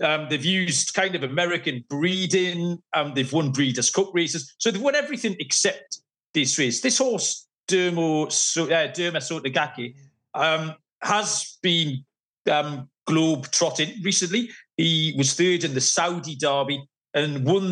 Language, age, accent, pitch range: English, 40-59, British, 140-190 Hz